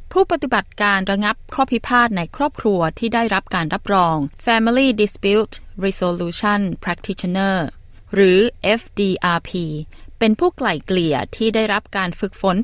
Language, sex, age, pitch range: Thai, female, 20-39, 175-235 Hz